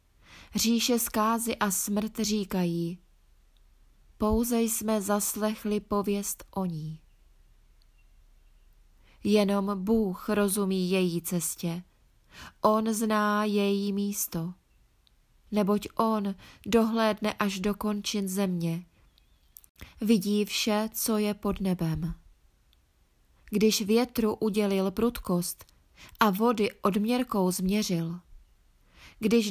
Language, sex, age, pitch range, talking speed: Czech, female, 20-39, 180-215 Hz, 85 wpm